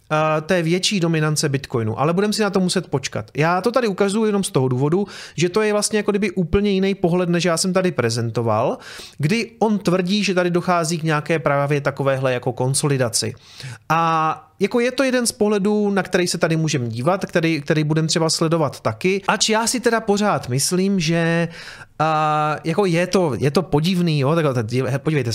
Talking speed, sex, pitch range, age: 190 wpm, male, 135-185 Hz, 30-49